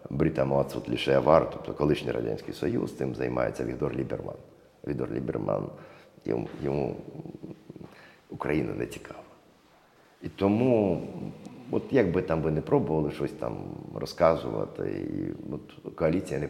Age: 50-69